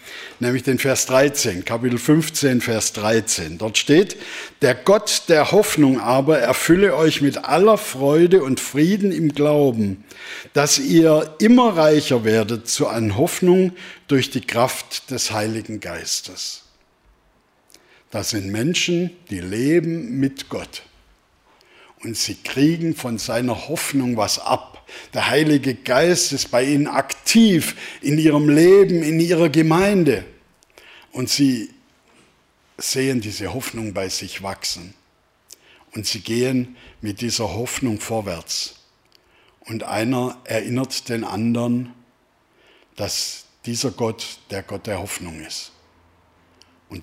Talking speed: 120 wpm